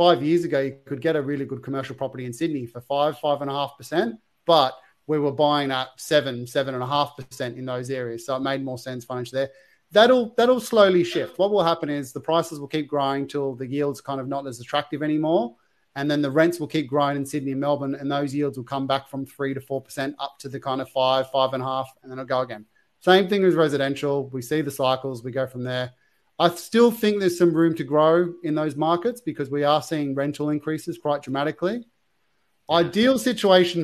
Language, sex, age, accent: English, male, 30-49, Australian